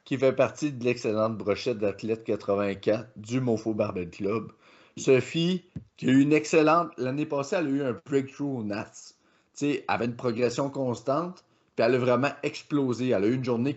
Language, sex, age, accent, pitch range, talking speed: French, male, 30-49, Canadian, 110-140 Hz, 190 wpm